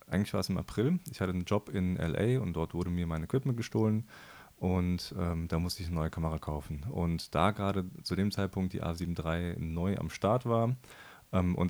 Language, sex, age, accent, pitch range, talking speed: German, male, 30-49, German, 80-100 Hz, 210 wpm